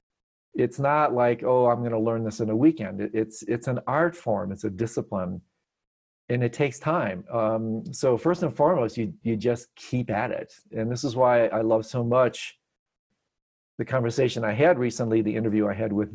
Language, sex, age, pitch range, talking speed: English, male, 40-59, 110-130 Hz, 195 wpm